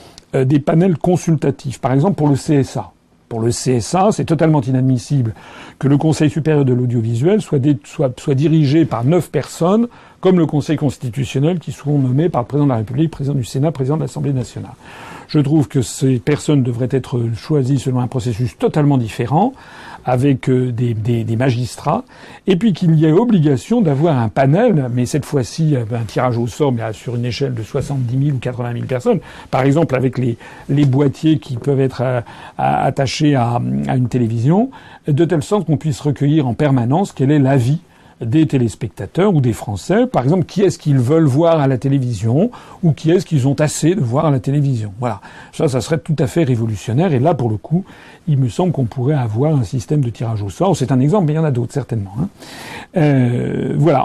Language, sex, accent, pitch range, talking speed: French, male, French, 125-160 Hz, 205 wpm